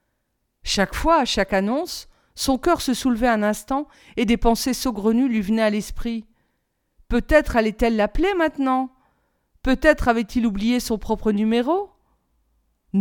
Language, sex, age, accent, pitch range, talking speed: French, female, 40-59, French, 195-255 Hz, 145 wpm